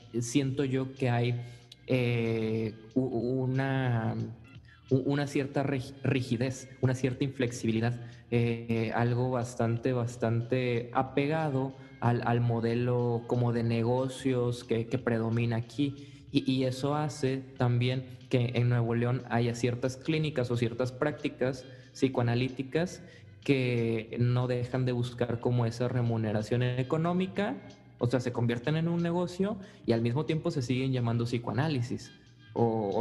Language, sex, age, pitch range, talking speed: Spanish, male, 20-39, 120-150 Hz, 125 wpm